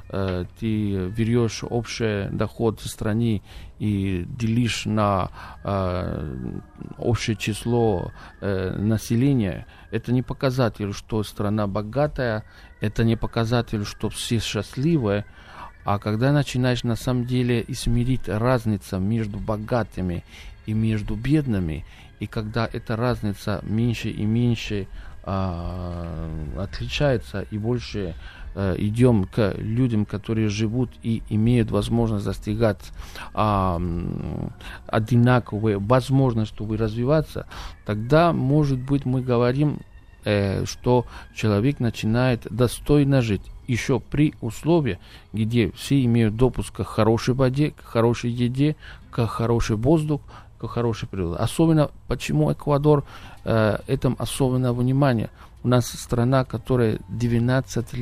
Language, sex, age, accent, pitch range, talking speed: Russian, male, 40-59, native, 100-125 Hz, 110 wpm